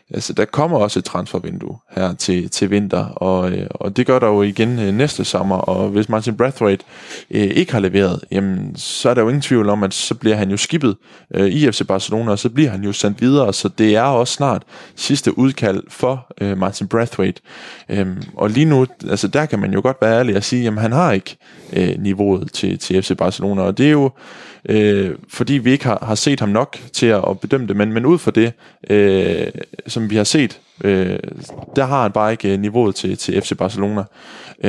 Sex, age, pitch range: male, 20-39, 100-120 Hz